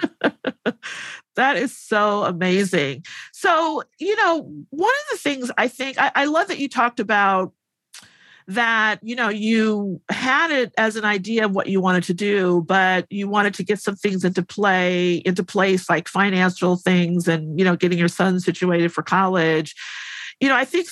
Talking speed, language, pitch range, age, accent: 180 wpm, English, 175-215 Hz, 50-69, American